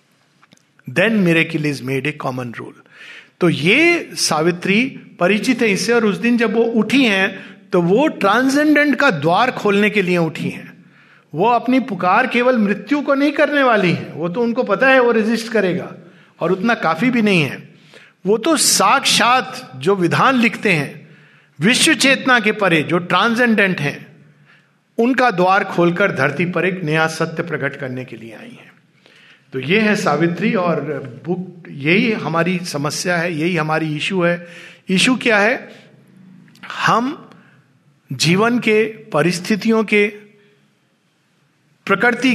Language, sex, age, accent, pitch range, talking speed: Hindi, male, 50-69, native, 165-235 Hz, 145 wpm